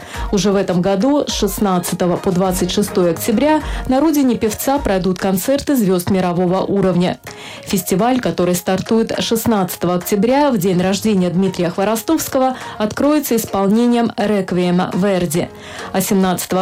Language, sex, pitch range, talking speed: Russian, female, 190-255 Hz, 120 wpm